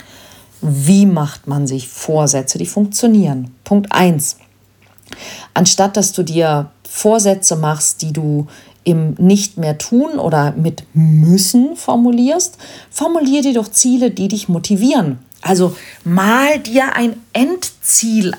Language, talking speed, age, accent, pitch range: German, 115 wpm, 50-69, German, 150-220 Hz